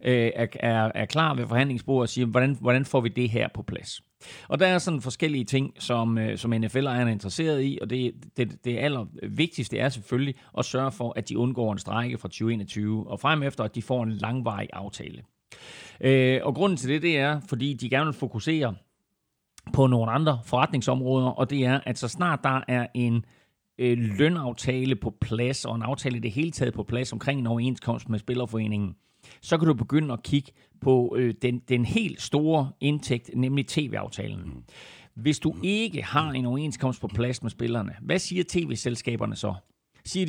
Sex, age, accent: male, 30-49, native